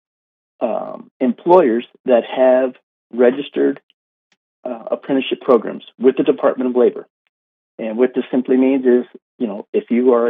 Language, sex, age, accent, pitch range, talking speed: English, male, 50-69, American, 110-130 Hz, 140 wpm